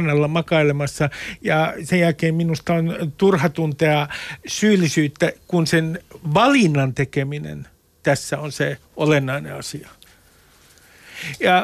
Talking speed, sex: 100 wpm, male